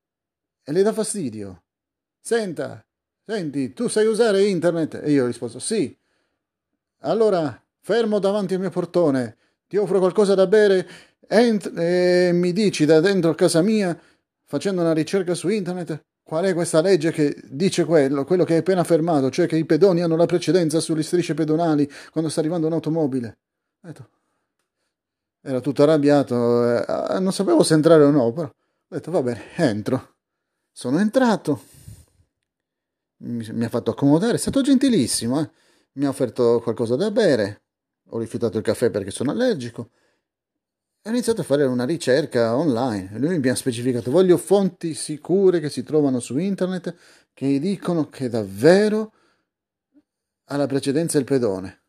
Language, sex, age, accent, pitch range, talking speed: Italian, male, 30-49, native, 130-185 Hz, 155 wpm